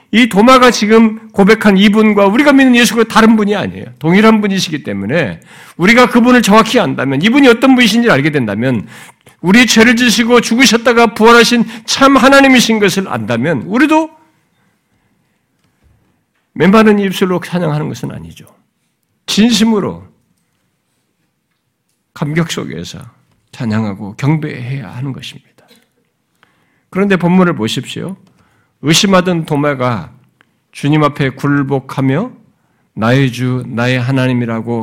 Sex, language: male, Korean